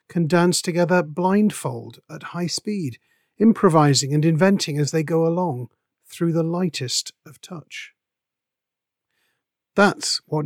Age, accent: 50-69, British